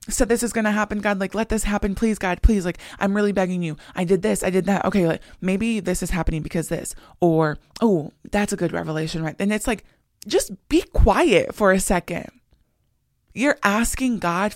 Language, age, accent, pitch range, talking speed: English, 20-39, American, 165-210 Hz, 215 wpm